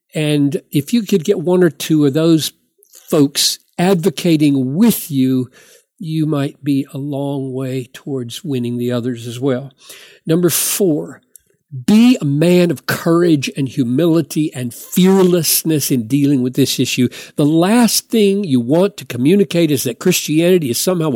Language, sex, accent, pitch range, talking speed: English, male, American, 135-190 Hz, 155 wpm